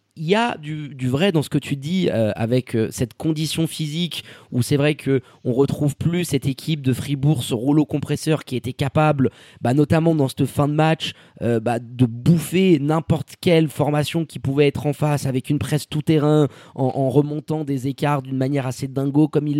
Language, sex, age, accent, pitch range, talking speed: French, male, 20-39, French, 130-160 Hz, 210 wpm